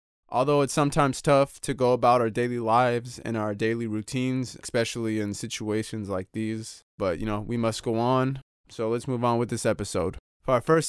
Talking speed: 200 wpm